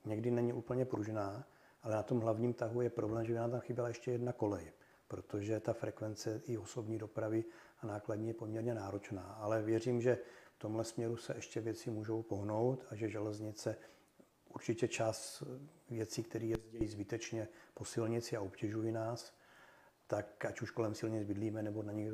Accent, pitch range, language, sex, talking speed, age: native, 110-120 Hz, Czech, male, 175 wpm, 40-59